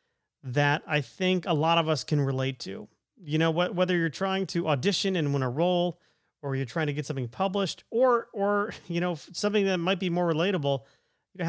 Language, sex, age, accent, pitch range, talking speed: English, male, 40-59, American, 145-190 Hz, 210 wpm